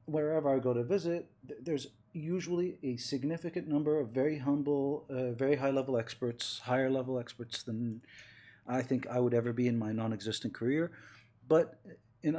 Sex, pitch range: male, 115-150 Hz